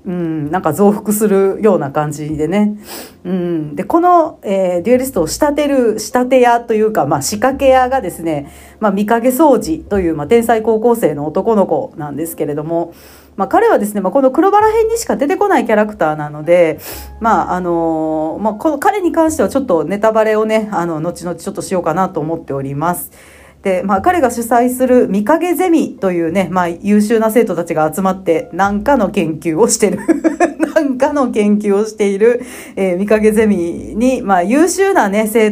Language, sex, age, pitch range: Japanese, female, 40-59, 175-245 Hz